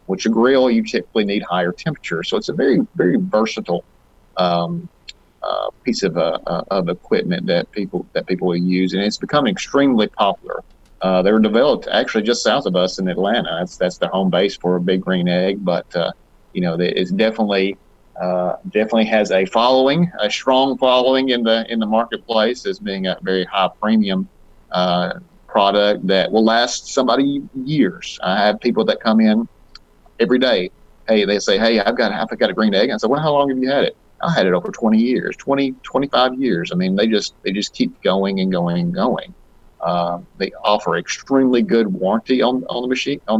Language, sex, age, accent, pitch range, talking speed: English, male, 40-59, American, 95-135 Hz, 200 wpm